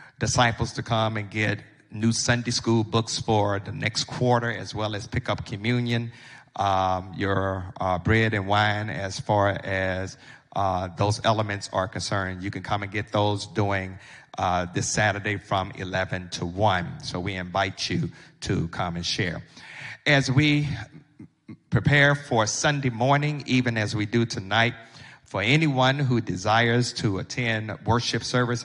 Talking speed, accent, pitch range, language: 155 wpm, American, 100-125 Hz, English